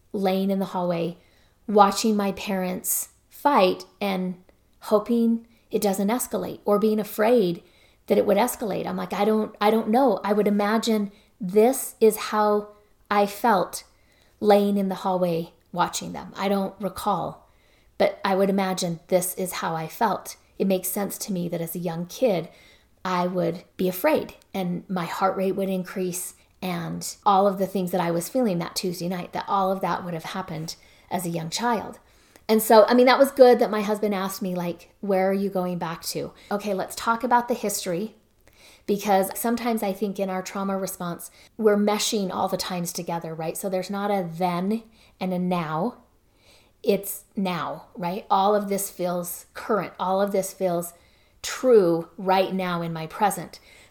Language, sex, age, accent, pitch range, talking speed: English, female, 40-59, American, 180-210 Hz, 180 wpm